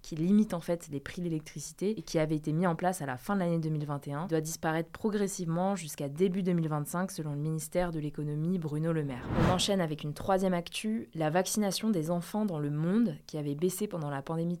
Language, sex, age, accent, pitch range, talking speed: French, female, 20-39, French, 155-190 Hz, 220 wpm